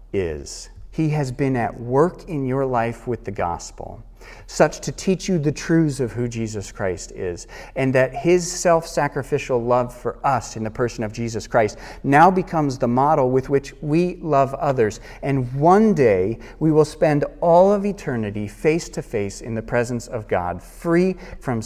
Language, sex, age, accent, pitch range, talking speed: English, male, 40-59, American, 100-130 Hz, 175 wpm